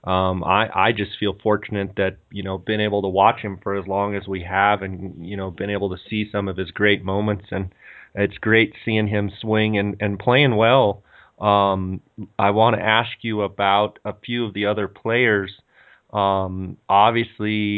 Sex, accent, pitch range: male, American, 100-110 Hz